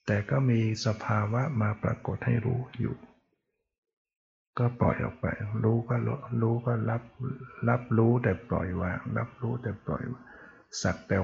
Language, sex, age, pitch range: Thai, male, 60-79, 105-120 Hz